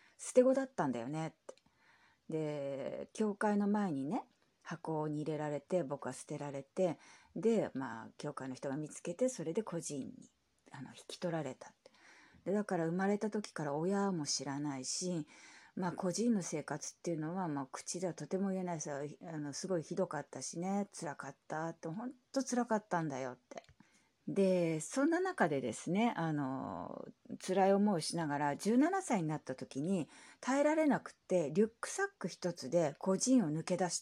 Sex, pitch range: female, 145-215 Hz